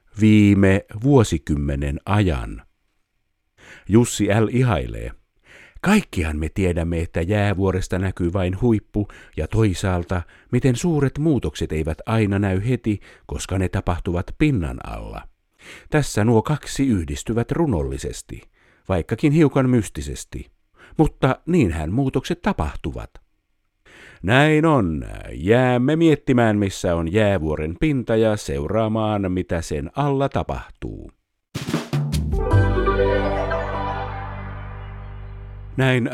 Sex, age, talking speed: male, 50-69, 90 wpm